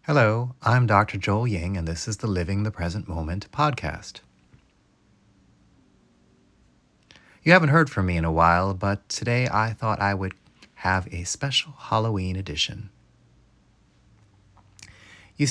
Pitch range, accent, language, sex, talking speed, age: 95-125 Hz, American, English, male, 130 wpm, 30-49